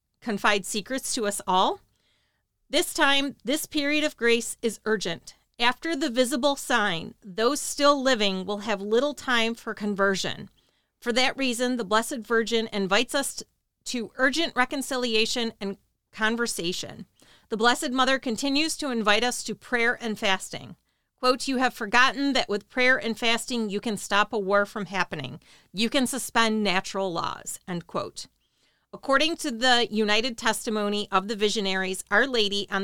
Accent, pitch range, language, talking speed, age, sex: American, 200-255 Hz, English, 155 wpm, 40-59, female